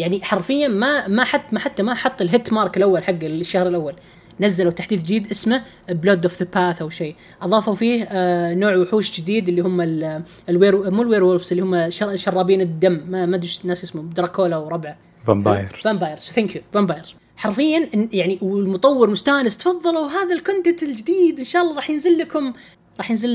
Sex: female